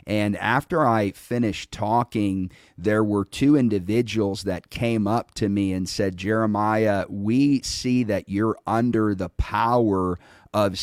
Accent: American